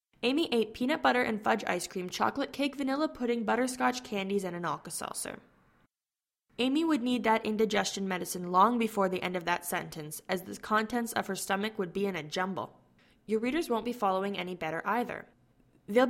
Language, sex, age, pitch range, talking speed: English, female, 10-29, 185-230 Hz, 185 wpm